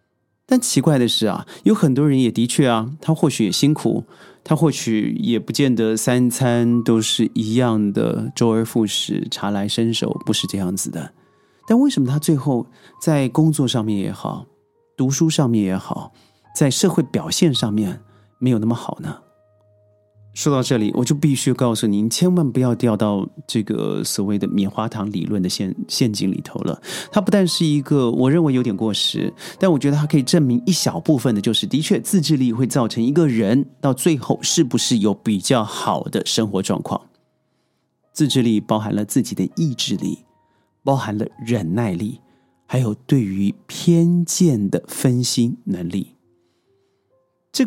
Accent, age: native, 30-49